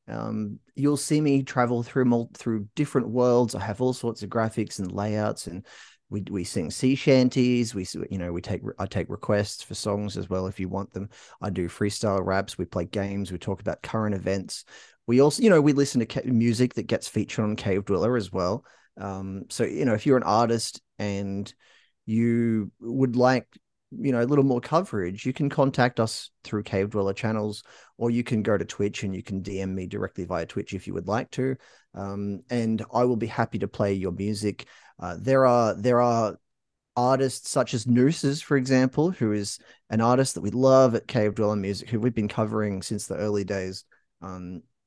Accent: Australian